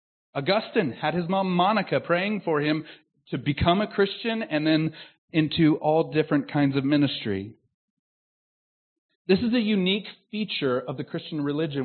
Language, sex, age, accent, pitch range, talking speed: English, male, 40-59, American, 135-180 Hz, 145 wpm